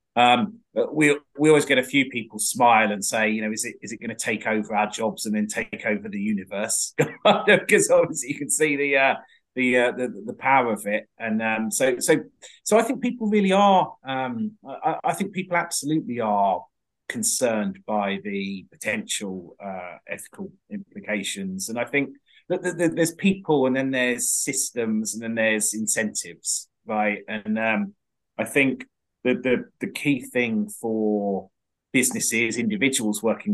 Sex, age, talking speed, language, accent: male, 30-49, 170 wpm, English, British